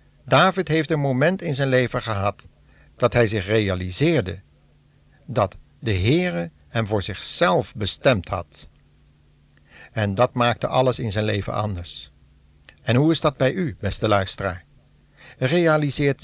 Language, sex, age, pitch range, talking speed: Dutch, male, 60-79, 100-140 Hz, 135 wpm